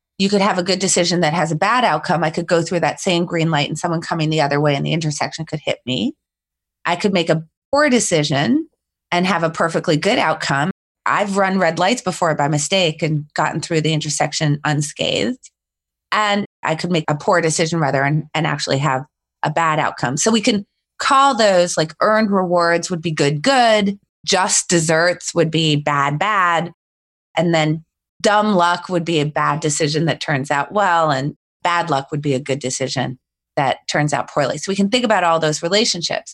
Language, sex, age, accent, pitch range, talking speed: English, female, 20-39, American, 155-195 Hz, 200 wpm